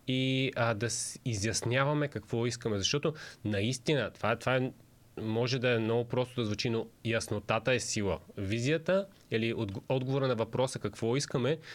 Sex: male